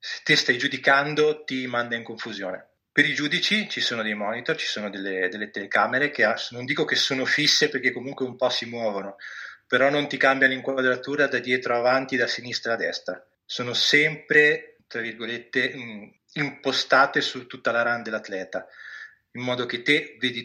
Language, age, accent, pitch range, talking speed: Italian, 30-49, native, 120-135 Hz, 175 wpm